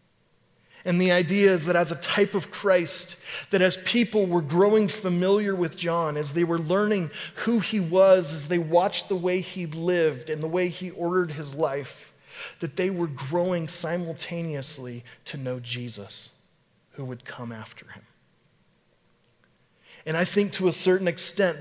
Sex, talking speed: male, 165 wpm